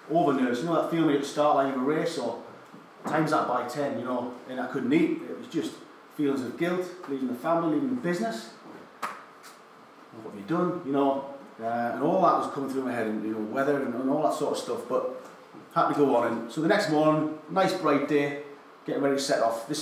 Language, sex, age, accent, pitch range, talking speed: English, male, 30-49, British, 115-150 Hz, 240 wpm